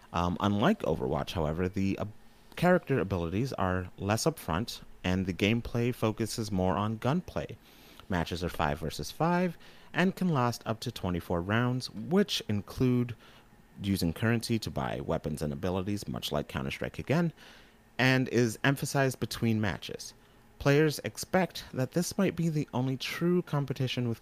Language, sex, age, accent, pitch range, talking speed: English, male, 30-49, American, 95-130 Hz, 145 wpm